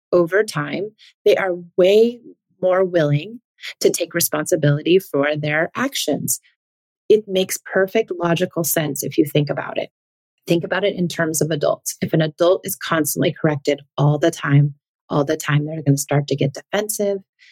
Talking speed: 165 wpm